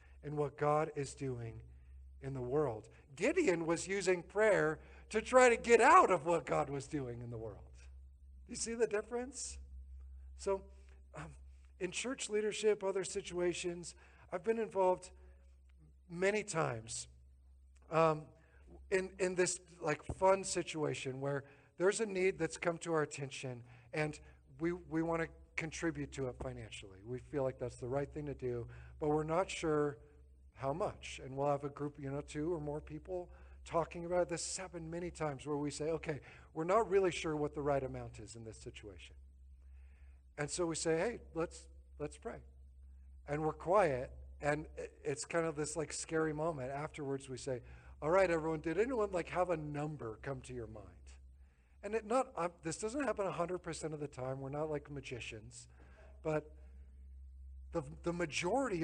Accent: American